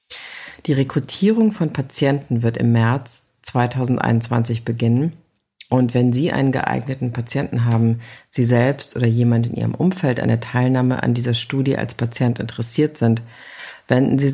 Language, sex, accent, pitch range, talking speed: English, female, German, 120-150 Hz, 140 wpm